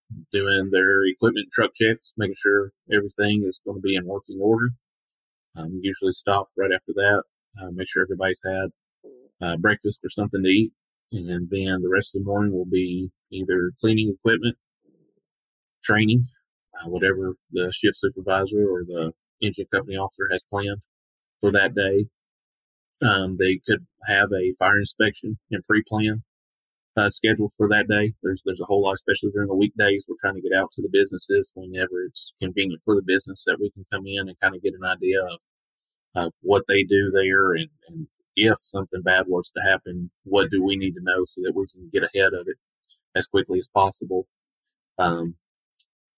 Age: 30-49